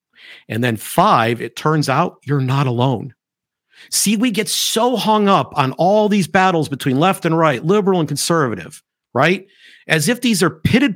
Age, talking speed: 50-69, 175 wpm